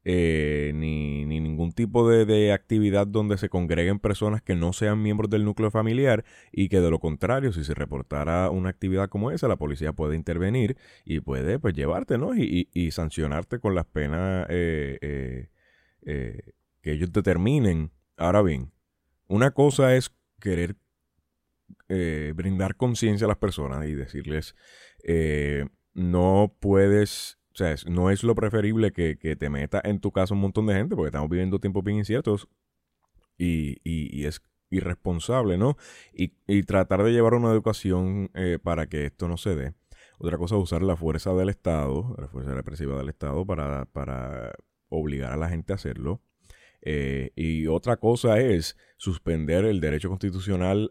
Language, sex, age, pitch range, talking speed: Spanish, male, 30-49, 75-100 Hz, 165 wpm